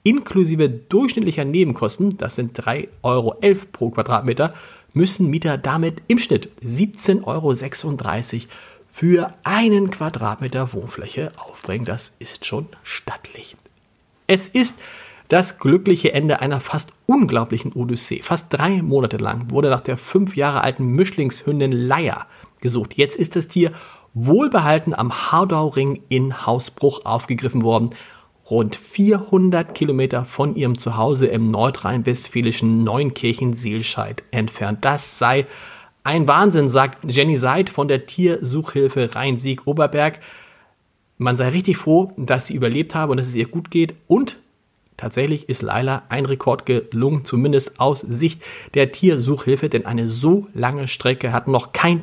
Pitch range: 120-165 Hz